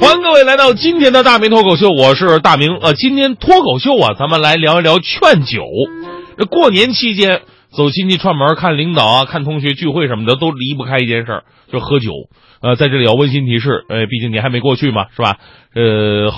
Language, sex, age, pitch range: Chinese, male, 30-49, 125-185 Hz